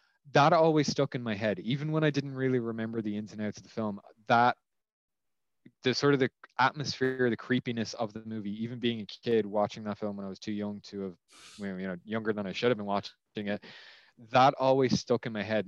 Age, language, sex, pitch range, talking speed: 20-39, English, male, 100-125 Hz, 230 wpm